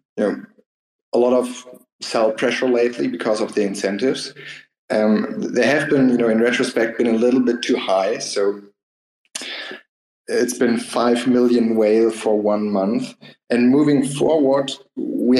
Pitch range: 115-135 Hz